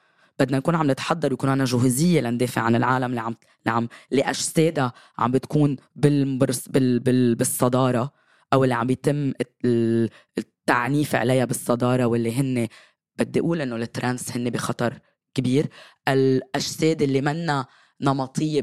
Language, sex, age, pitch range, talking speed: Arabic, female, 20-39, 125-155 Hz, 120 wpm